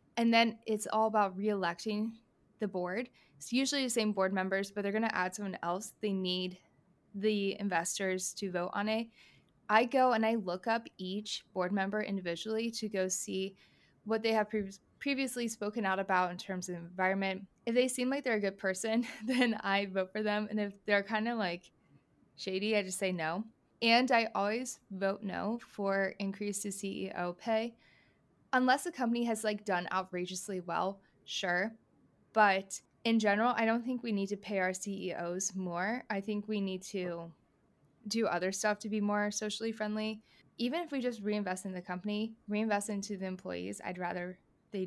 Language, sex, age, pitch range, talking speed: English, female, 20-39, 185-225 Hz, 180 wpm